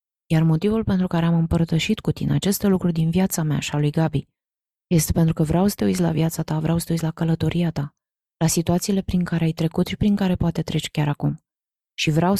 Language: Romanian